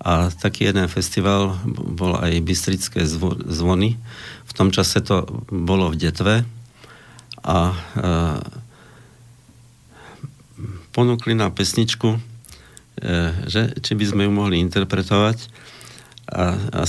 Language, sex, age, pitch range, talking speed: Slovak, male, 50-69, 90-115 Hz, 105 wpm